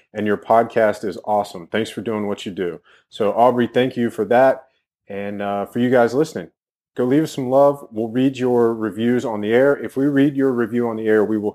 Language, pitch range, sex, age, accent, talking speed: English, 100-120 Hz, male, 30-49, American, 235 wpm